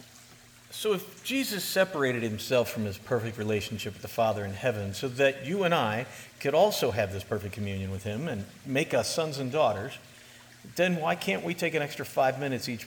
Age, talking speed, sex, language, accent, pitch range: 50-69, 200 wpm, male, English, American, 115-150 Hz